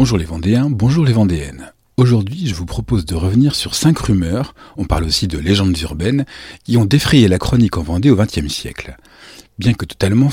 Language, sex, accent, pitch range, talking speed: French, male, French, 95-135 Hz, 200 wpm